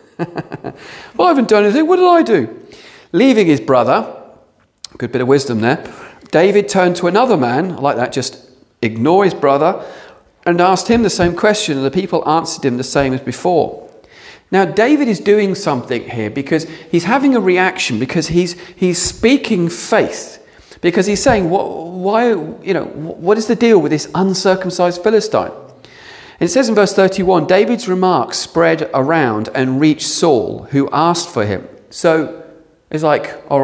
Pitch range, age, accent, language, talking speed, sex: 145-205 Hz, 40-59, British, English, 170 wpm, male